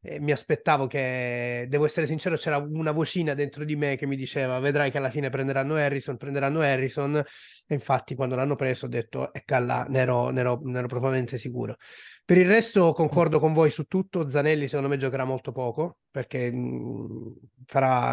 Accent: native